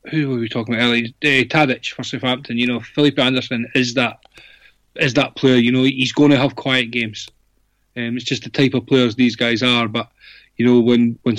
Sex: male